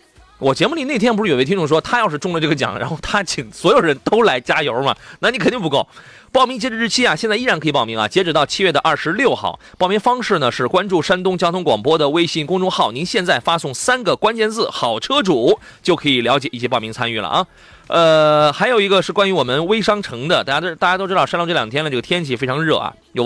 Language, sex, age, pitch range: Chinese, male, 30-49, 140-205 Hz